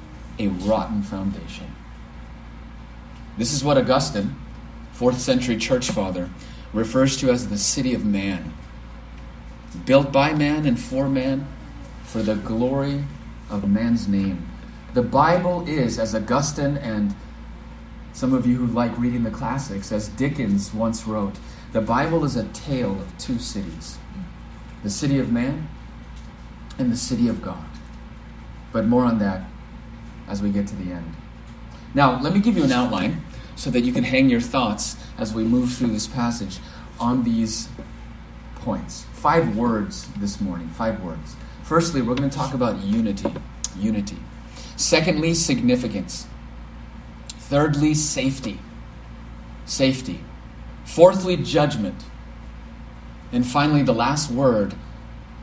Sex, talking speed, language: male, 135 wpm, English